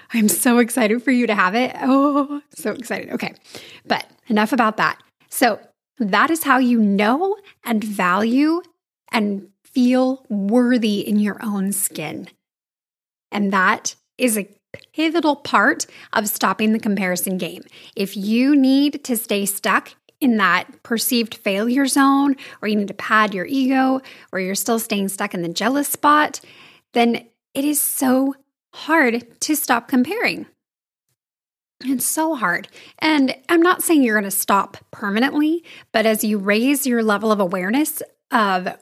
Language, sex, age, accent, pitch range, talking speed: English, female, 10-29, American, 205-270 Hz, 150 wpm